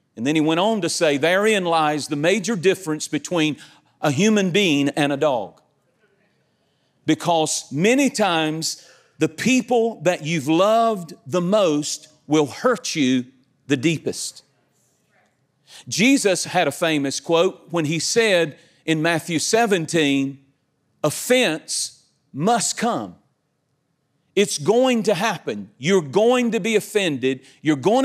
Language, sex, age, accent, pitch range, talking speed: English, male, 40-59, American, 145-190 Hz, 125 wpm